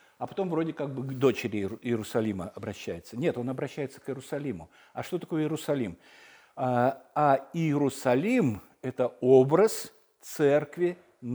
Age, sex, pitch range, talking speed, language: 60-79, male, 120-160 Hz, 120 wpm, Russian